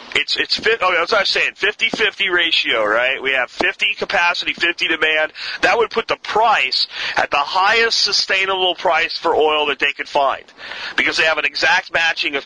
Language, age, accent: English, 40-59, American